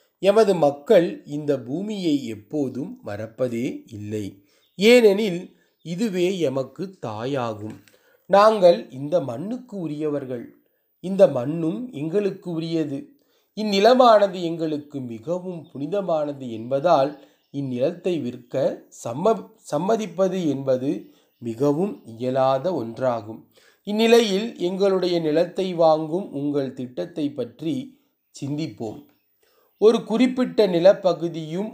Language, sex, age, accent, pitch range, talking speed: Tamil, male, 30-49, native, 140-195 Hz, 80 wpm